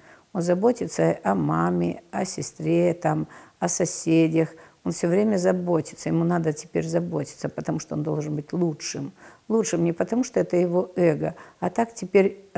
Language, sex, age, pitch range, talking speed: Russian, female, 50-69, 150-190 Hz, 155 wpm